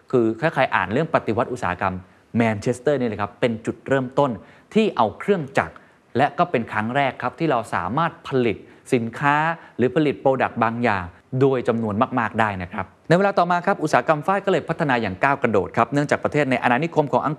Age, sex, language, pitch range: 20-39, male, Thai, 105-155 Hz